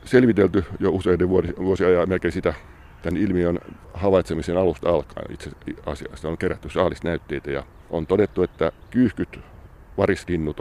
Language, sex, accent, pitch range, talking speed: Finnish, male, native, 80-95 Hz, 130 wpm